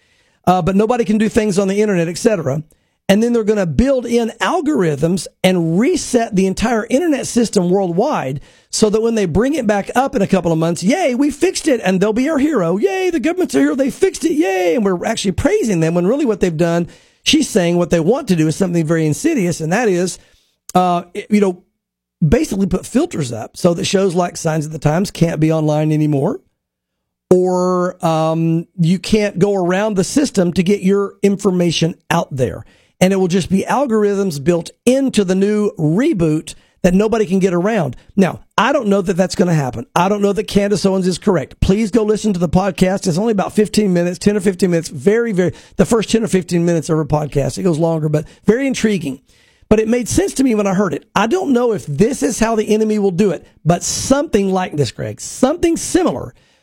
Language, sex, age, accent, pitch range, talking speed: English, male, 40-59, American, 170-220 Hz, 220 wpm